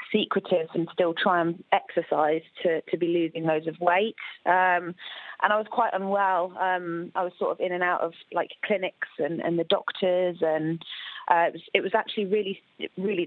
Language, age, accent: English, 20-39, British